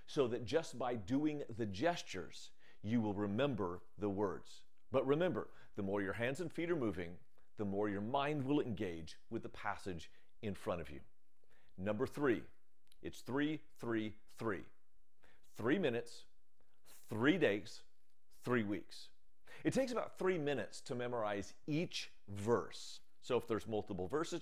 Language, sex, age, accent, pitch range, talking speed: English, male, 40-59, American, 100-140 Hz, 150 wpm